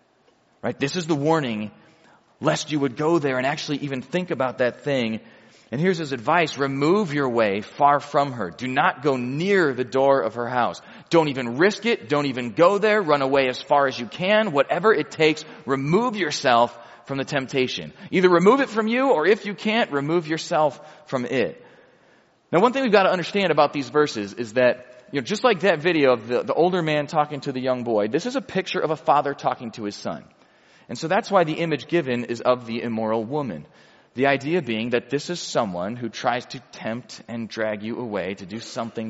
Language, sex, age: English, male, 30-49